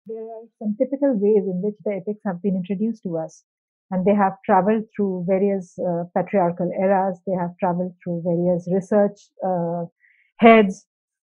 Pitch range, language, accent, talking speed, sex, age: 185-245 Hz, English, Indian, 165 wpm, female, 50-69